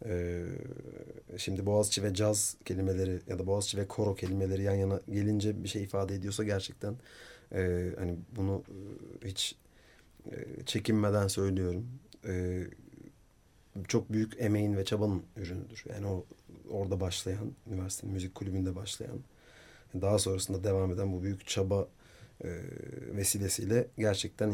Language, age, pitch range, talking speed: Turkish, 30-49, 95-105 Hz, 115 wpm